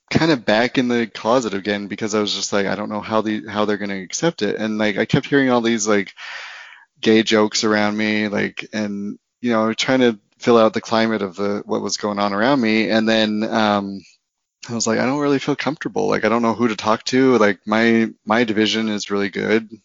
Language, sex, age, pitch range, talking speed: English, male, 30-49, 105-115 Hz, 240 wpm